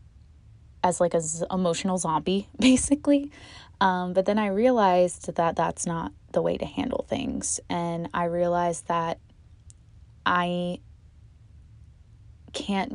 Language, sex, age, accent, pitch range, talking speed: English, female, 20-39, American, 150-180 Hz, 115 wpm